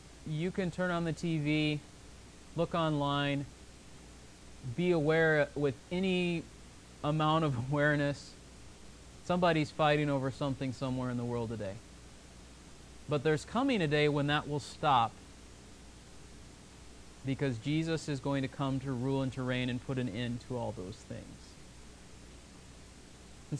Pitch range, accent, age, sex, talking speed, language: 120-175 Hz, American, 30-49, male, 135 wpm, English